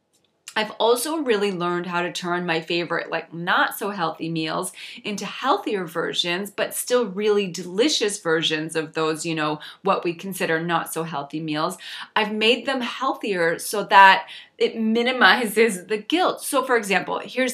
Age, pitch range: 20-39, 165-225 Hz